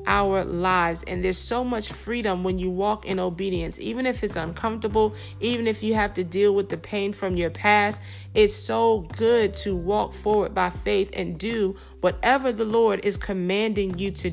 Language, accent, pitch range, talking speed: English, American, 180-215 Hz, 190 wpm